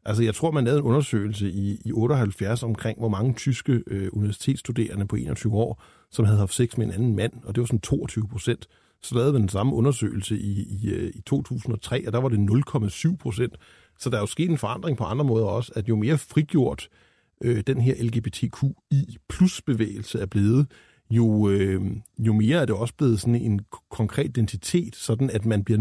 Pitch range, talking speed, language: 110-135 Hz, 200 wpm, Danish